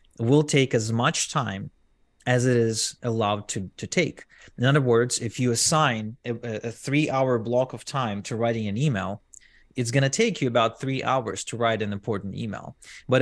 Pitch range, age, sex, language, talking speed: 105-130 Hz, 30-49, male, English, 190 wpm